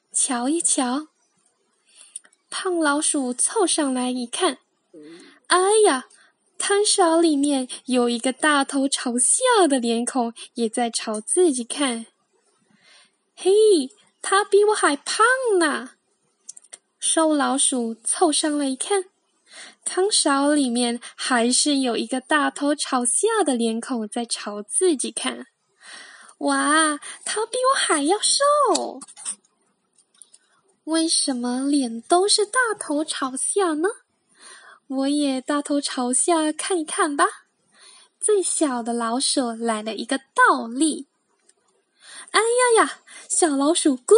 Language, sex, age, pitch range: Chinese, female, 10-29, 260-370 Hz